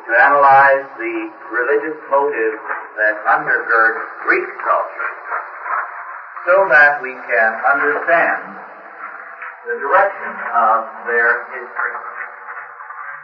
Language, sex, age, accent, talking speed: English, male, 50-69, American, 85 wpm